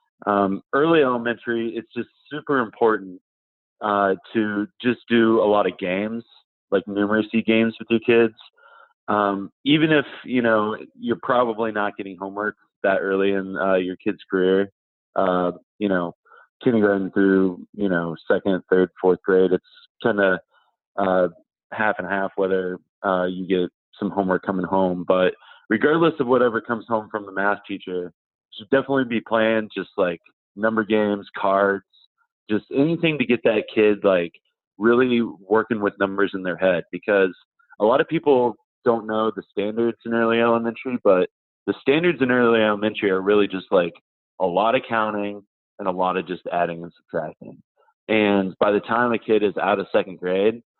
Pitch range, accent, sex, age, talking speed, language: 95-115 Hz, American, male, 30-49, 170 wpm, English